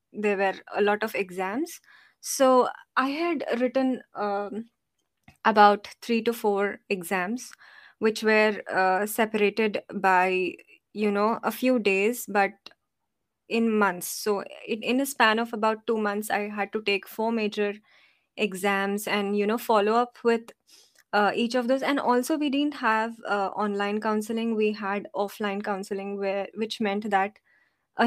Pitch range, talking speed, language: 200-230 Hz, 150 wpm, English